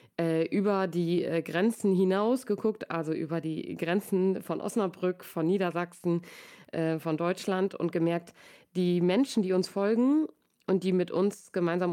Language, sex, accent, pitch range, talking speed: German, female, German, 170-200 Hz, 150 wpm